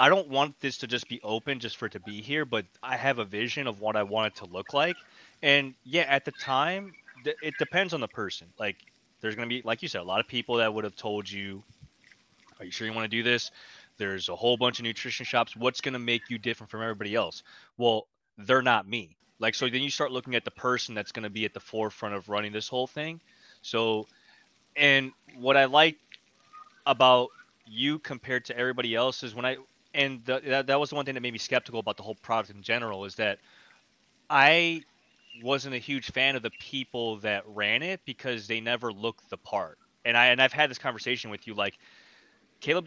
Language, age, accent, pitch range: English, 20-39, American, 110-140 Hz